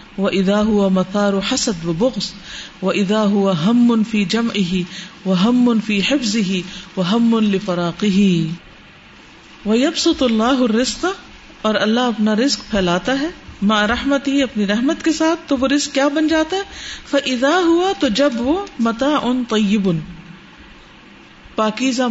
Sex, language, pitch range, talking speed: female, Urdu, 190-265 Hz, 125 wpm